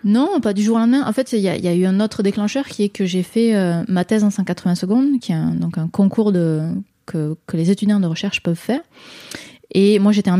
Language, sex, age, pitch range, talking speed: French, female, 20-39, 170-210 Hz, 265 wpm